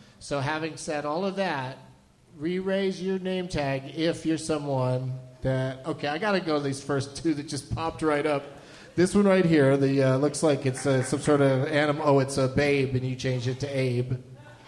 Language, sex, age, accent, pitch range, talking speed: English, male, 30-49, American, 130-165 Hz, 210 wpm